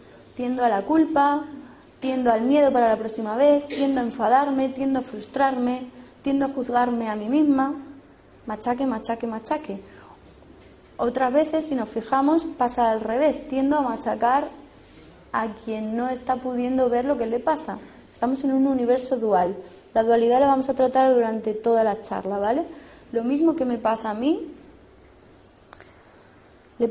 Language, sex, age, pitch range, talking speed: Spanish, female, 20-39, 225-275 Hz, 160 wpm